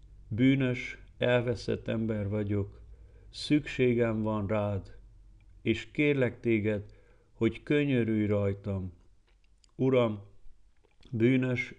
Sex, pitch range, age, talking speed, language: male, 100-120 Hz, 50-69, 75 wpm, Hungarian